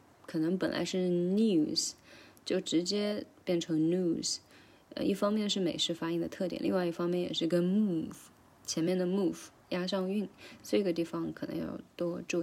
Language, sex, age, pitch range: Chinese, female, 20-39, 165-185 Hz